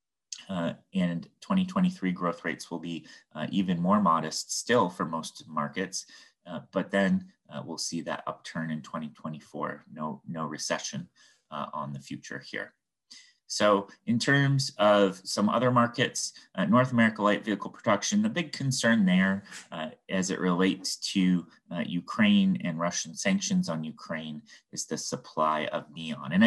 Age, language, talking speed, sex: 30-49, English, 155 wpm, male